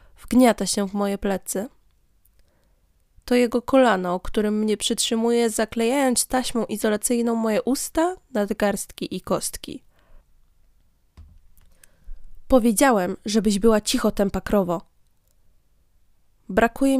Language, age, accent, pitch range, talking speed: Polish, 20-39, native, 200-250 Hz, 90 wpm